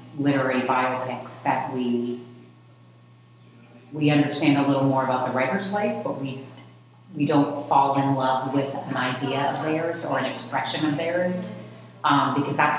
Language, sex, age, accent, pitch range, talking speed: English, female, 40-59, American, 125-145 Hz, 155 wpm